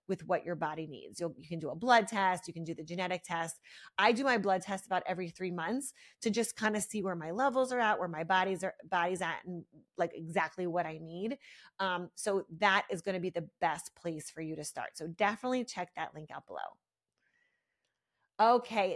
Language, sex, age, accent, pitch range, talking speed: English, female, 30-49, American, 180-230 Hz, 220 wpm